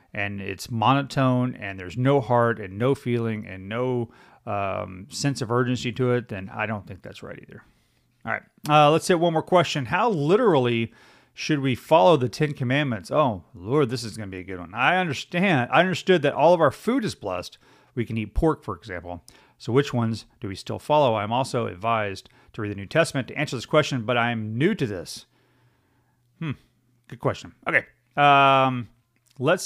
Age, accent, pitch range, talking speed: 40-59, American, 115-150 Hz, 200 wpm